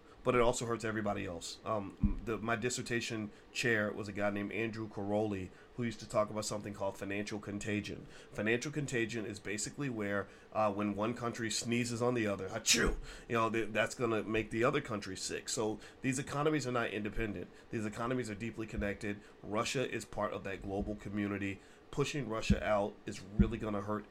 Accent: American